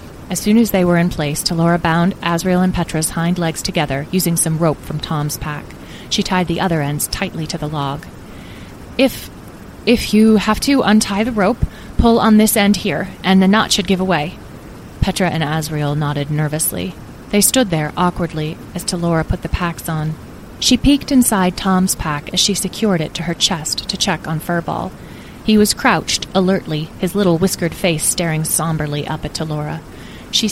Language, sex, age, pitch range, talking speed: English, female, 30-49, 155-190 Hz, 185 wpm